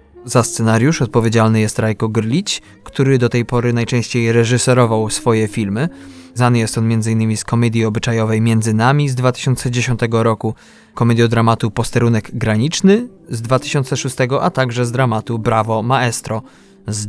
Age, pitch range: 20-39, 115-130 Hz